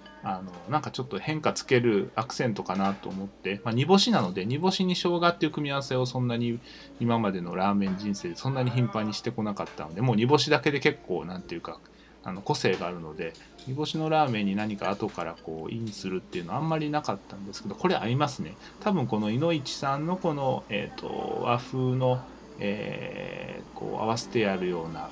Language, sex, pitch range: Japanese, male, 100-140 Hz